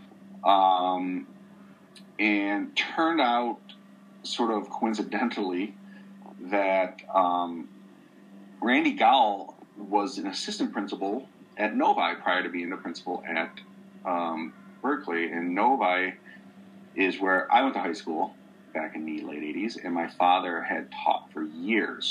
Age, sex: 40-59, male